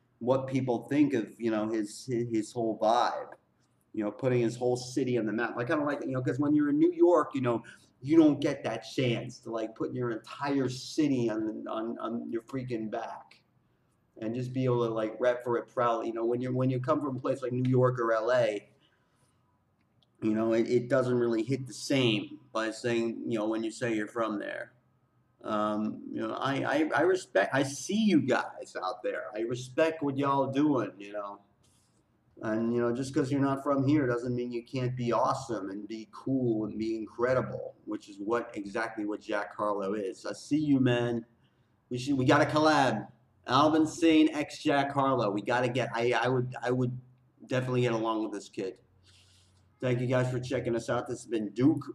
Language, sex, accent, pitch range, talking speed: English, male, American, 115-135 Hz, 220 wpm